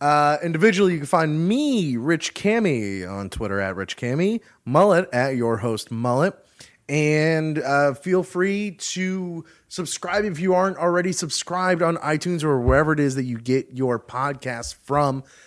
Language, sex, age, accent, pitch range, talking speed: English, male, 30-49, American, 125-185 Hz, 160 wpm